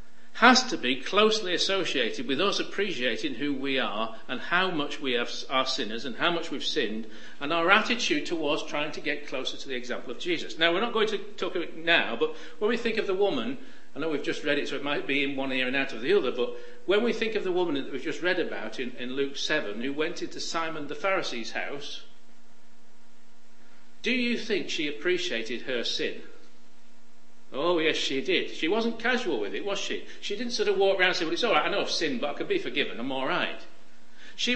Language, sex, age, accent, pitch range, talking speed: English, male, 50-69, British, 170-265 Hz, 230 wpm